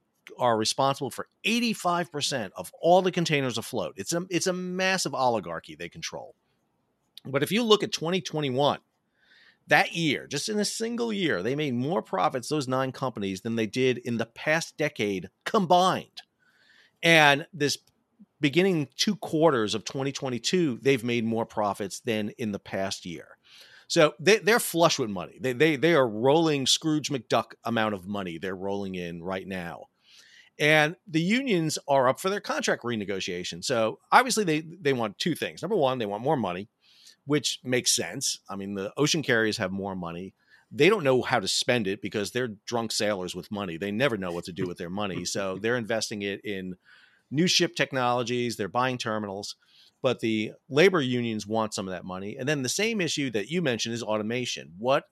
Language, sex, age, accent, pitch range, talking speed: English, male, 40-59, American, 105-155 Hz, 185 wpm